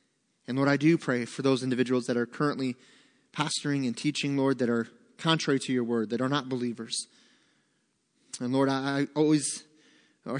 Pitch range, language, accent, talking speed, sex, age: 125-150 Hz, English, American, 175 wpm, male, 30-49